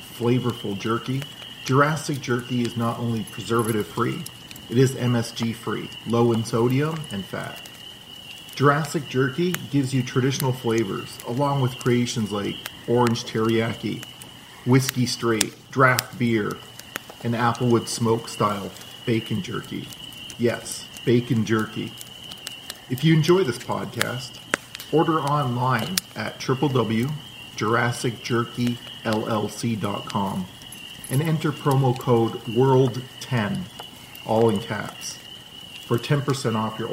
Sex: male